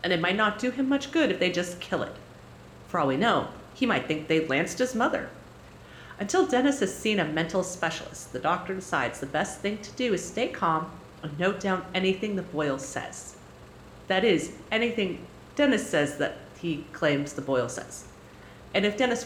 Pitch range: 165-255 Hz